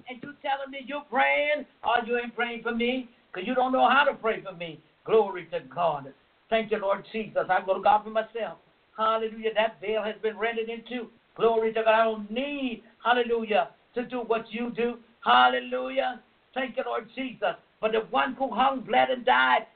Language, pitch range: English, 220-275 Hz